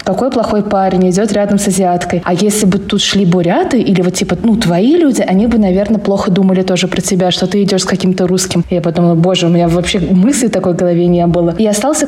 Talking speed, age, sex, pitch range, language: 235 wpm, 20-39, female, 180-220 Hz, Russian